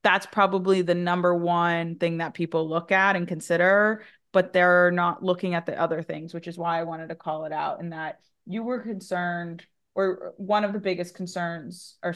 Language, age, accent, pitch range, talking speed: English, 20-39, American, 160-180 Hz, 200 wpm